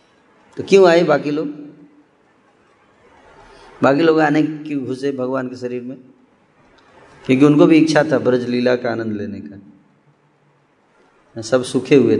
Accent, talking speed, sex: native, 140 wpm, male